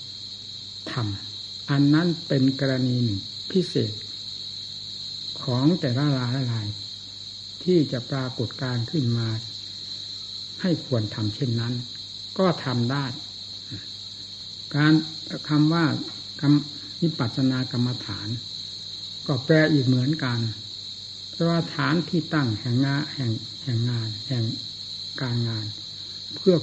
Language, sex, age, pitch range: Thai, male, 60-79, 105-145 Hz